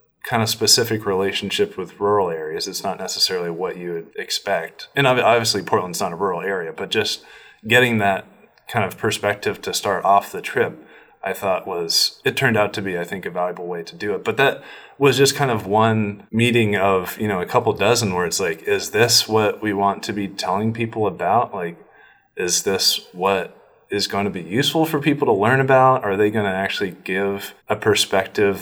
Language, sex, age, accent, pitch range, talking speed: English, male, 30-49, American, 100-135 Hz, 205 wpm